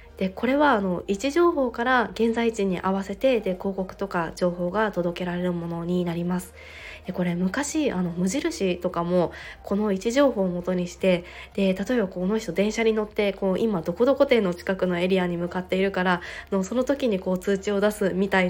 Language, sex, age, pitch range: Japanese, female, 20-39, 180-230 Hz